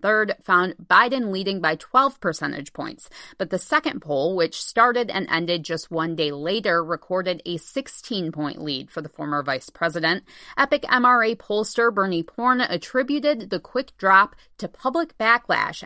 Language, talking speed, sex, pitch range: English, 155 wpm, female, 170-240 Hz